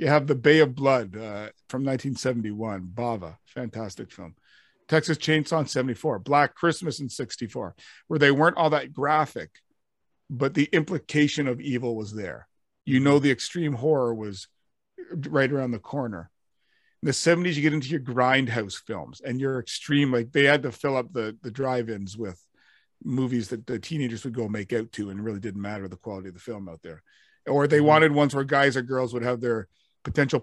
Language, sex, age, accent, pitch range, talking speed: English, male, 50-69, American, 120-150 Hz, 190 wpm